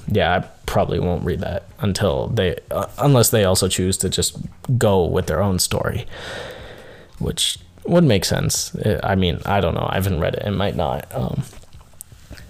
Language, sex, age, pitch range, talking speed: English, male, 20-39, 90-115 Hz, 180 wpm